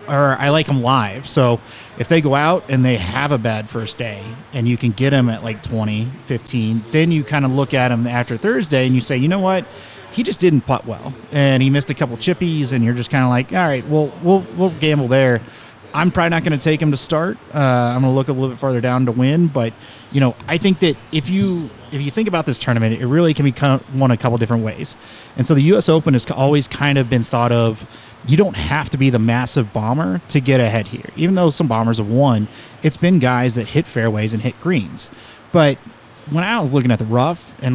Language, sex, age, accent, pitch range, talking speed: English, male, 30-49, American, 120-160 Hz, 250 wpm